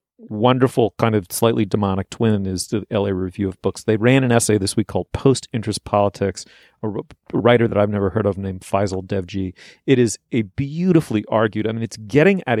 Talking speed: 195 wpm